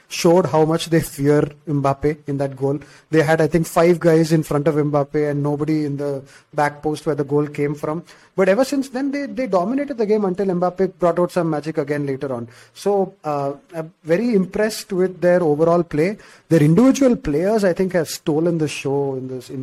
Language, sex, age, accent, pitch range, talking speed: English, male, 30-49, Indian, 140-165 Hz, 215 wpm